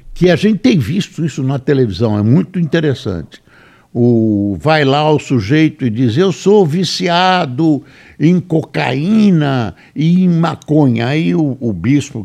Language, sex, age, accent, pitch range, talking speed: Portuguese, male, 60-79, Brazilian, 120-175 Hz, 140 wpm